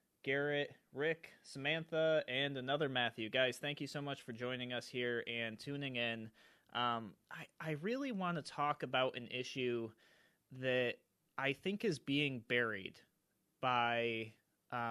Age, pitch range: 30-49, 120-145 Hz